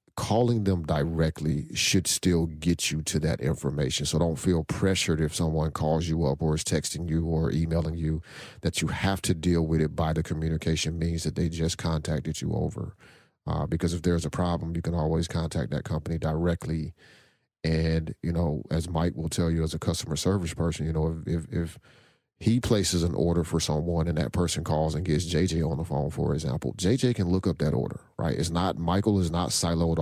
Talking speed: 210 wpm